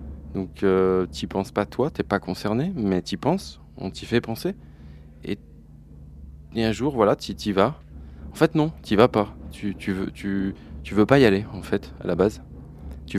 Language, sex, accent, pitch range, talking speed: French, male, French, 95-150 Hz, 200 wpm